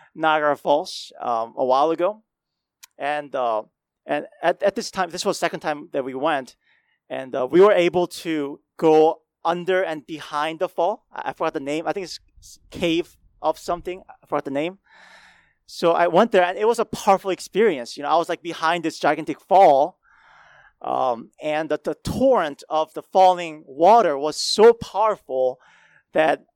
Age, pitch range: 30-49, 150-185 Hz